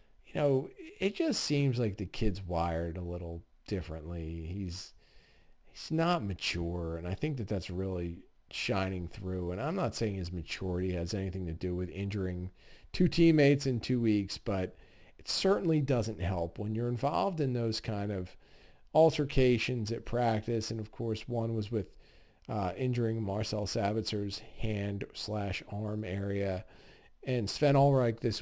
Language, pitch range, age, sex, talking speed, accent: English, 95-120 Hz, 40-59, male, 155 wpm, American